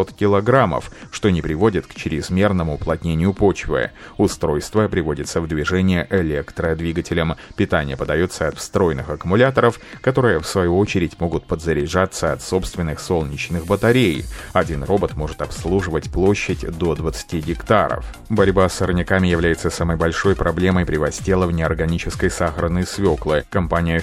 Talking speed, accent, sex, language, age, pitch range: 120 wpm, native, male, Russian, 30-49, 85-100 Hz